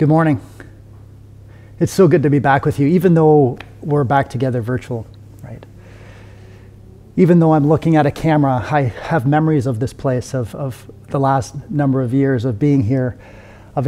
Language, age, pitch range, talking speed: English, 30-49, 110-145 Hz, 175 wpm